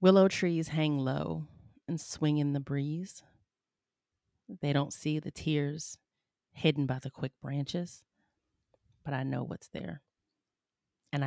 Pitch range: 135-150 Hz